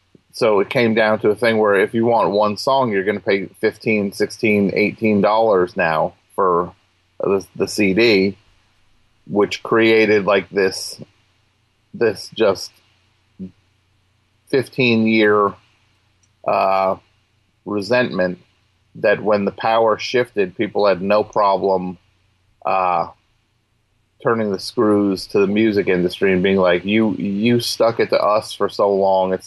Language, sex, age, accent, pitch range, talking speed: English, male, 30-49, American, 95-110 Hz, 130 wpm